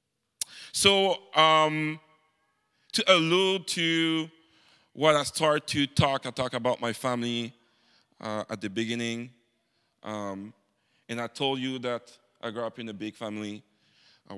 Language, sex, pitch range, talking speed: English, male, 110-145 Hz, 140 wpm